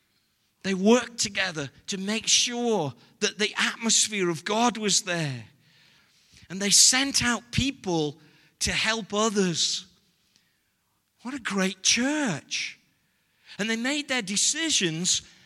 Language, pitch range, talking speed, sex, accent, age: English, 180-240 Hz, 115 wpm, male, British, 50-69